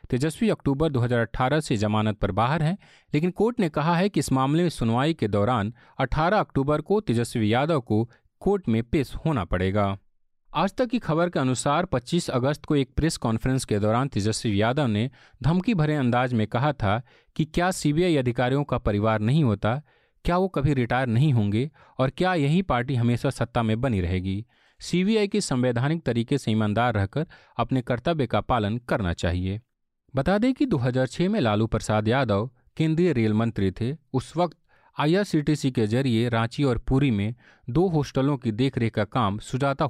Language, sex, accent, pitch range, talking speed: Hindi, male, native, 115-155 Hz, 180 wpm